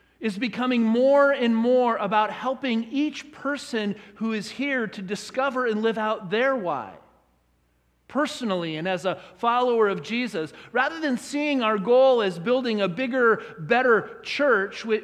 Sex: male